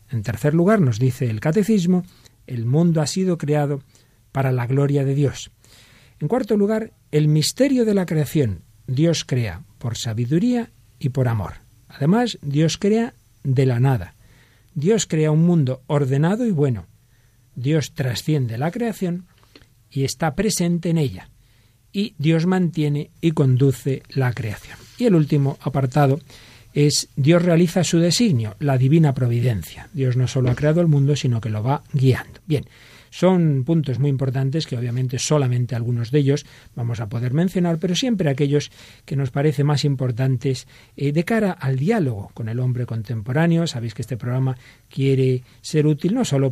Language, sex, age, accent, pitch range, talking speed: Spanish, male, 50-69, Spanish, 120-160 Hz, 165 wpm